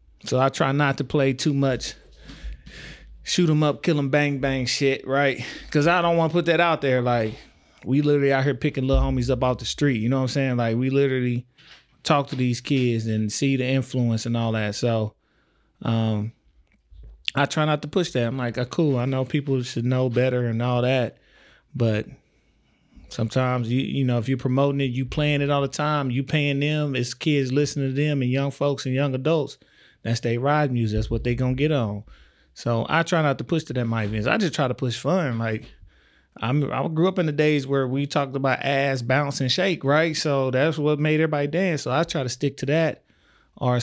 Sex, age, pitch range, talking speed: male, 20-39, 120-145 Hz, 225 wpm